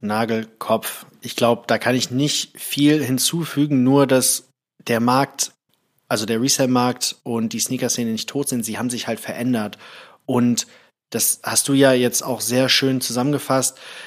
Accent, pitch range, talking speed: German, 115-140 Hz, 160 wpm